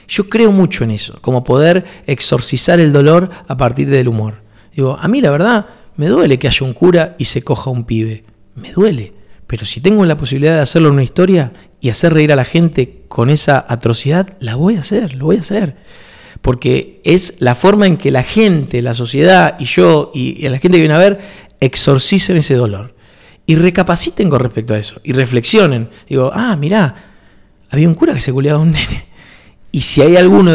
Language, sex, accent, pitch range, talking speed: Spanish, male, Argentinian, 125-185 Hz, 205 wpm